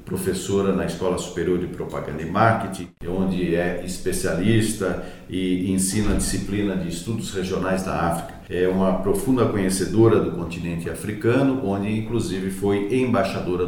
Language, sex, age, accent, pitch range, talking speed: Portuguese, male, 50-69, Brazilian, 95-120 Hz, 135 wpm